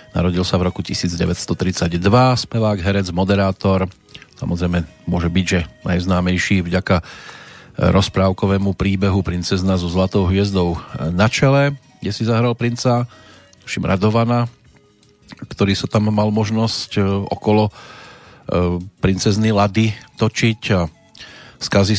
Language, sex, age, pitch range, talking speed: Slovak, male, 40-59, 90-110 Hz, 105 wpm